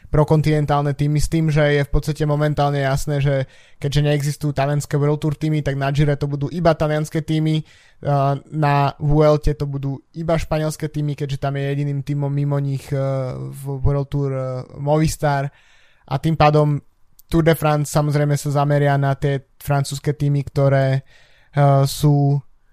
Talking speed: 150 wpm